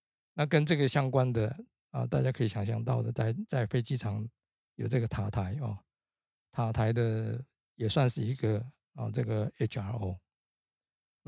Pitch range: 110-130 Hz